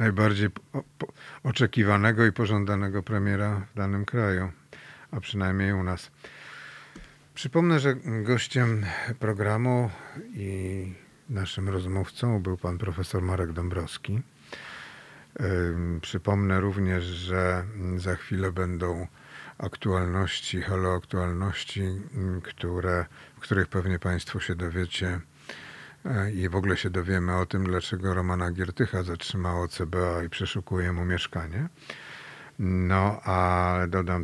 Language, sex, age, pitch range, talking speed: Polish, male, 50-69, 90-100 Hz, 105 wpm